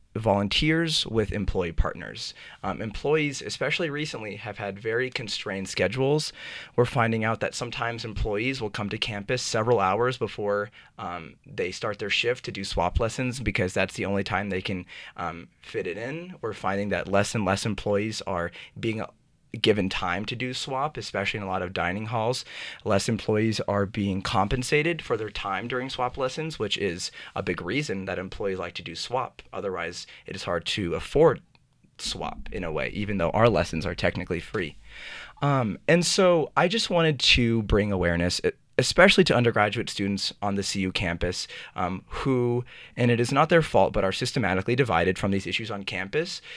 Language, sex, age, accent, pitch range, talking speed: English, male, 30-49, American, 100-130 Hz, 180 wpm